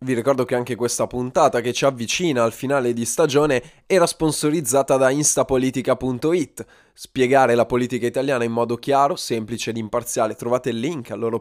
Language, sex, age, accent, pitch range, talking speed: Italian, male, 20-39, native, 125-180 Hz, 170 wpm